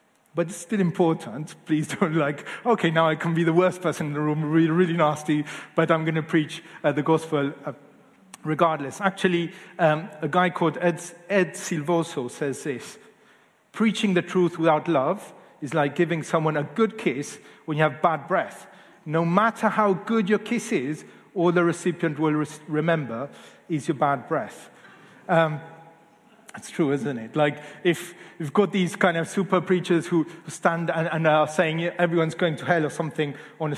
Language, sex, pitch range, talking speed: English, male, 150-180 Hz, 185 wpm